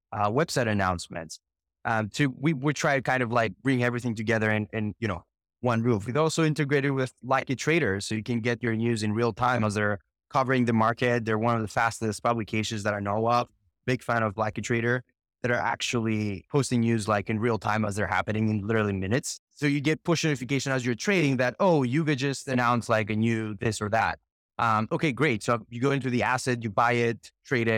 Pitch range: 110-135 Hz